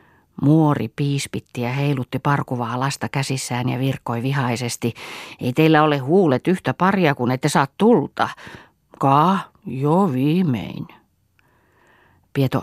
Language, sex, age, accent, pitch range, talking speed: Finnish, female, 40-59, native, 120-150 Hz, 115 wpm